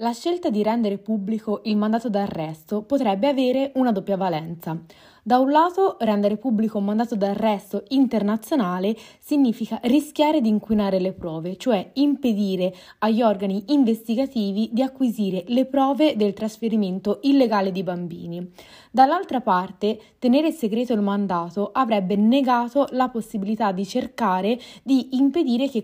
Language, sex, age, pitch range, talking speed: Italian, female, 20-39, 200-260 Hz, 130 wpm